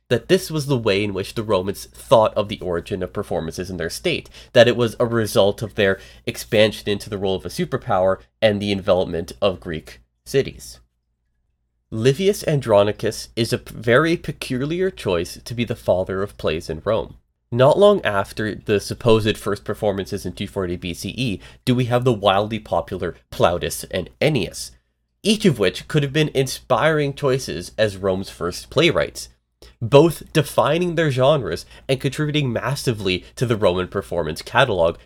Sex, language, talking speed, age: male, English, 165 wpm, 30-49